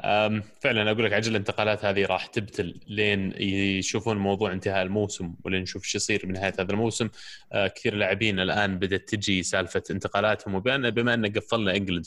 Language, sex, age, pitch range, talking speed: Arabic, male, 20-39, 95-110 Hz, 150 wpm